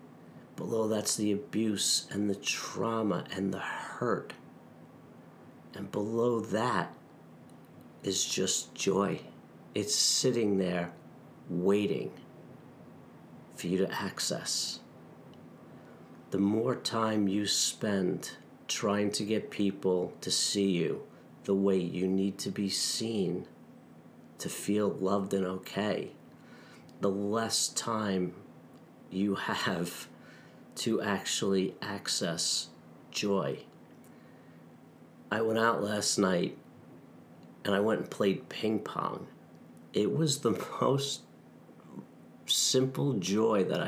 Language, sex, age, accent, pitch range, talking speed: English, male, 40-59, American, 85-105 Hz, 105 wpm